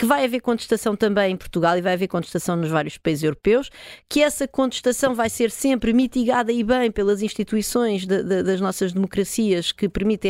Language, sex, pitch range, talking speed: Portuguese, female, 185-235 Hz, 180 wpm